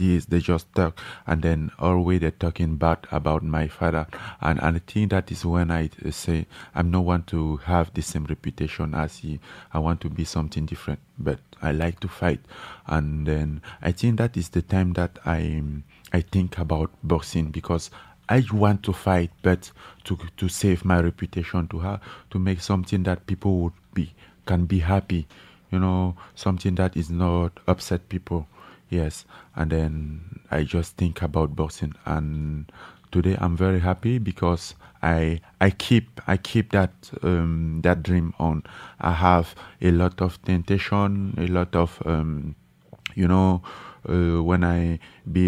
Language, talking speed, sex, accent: English, 170 wpm, male, French